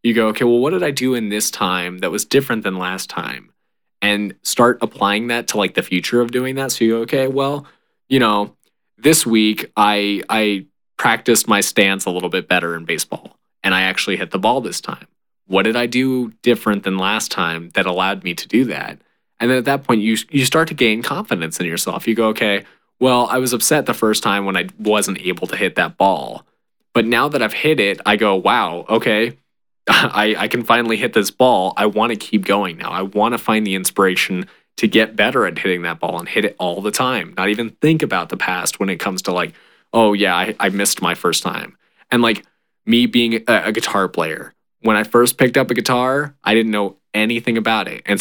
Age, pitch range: 20-39, 100-120 Hz